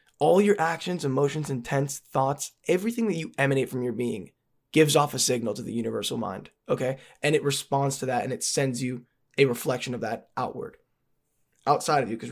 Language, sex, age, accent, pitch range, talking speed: English, male, 10-29, American, 135-170 Hz, 195 wpm